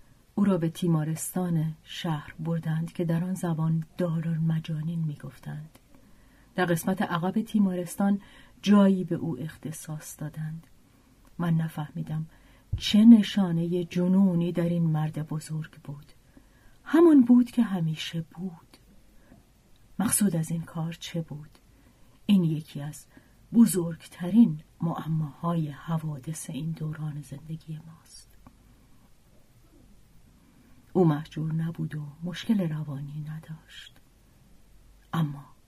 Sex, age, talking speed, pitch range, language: female, 40-59, 105 wpm, 155-180 Hz, Persian